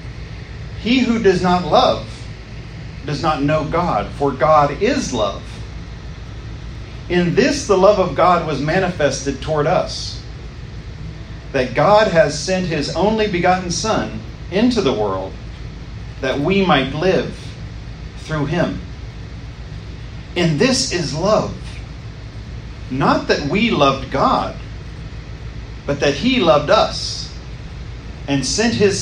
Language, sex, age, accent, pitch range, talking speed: English, male, 40-59, American, 120-165 Hz, 120 wpm